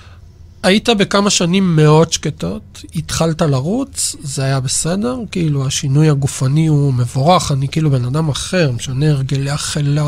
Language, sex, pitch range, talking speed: Hebrew, male, 130-180 Hz, 135 wpm